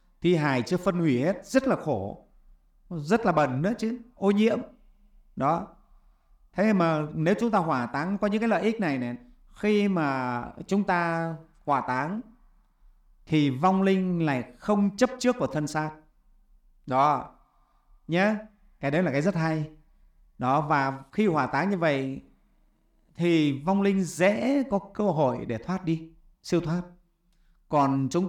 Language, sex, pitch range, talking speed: Vietnamese, male, 140-200 Hz, 160 wpm